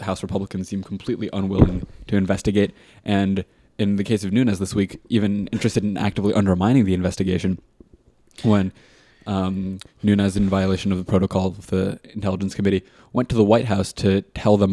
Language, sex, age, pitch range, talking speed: English, male, 20-39, 95-105 Hz, 170 wpm